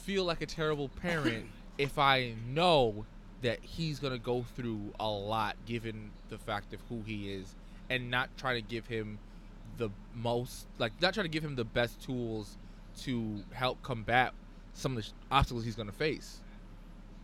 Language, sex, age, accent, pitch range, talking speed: English, male, 20-39, American, 110-150 Hz, 180 wpm